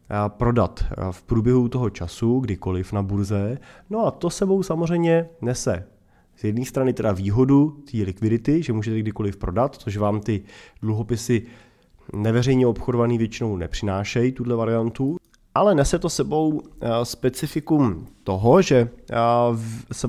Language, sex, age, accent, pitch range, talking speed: Czech, male, 20-39, native, 100-125 Hz, 130 wpm